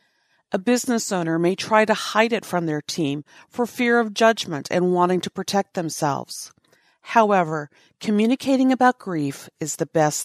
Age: 50-69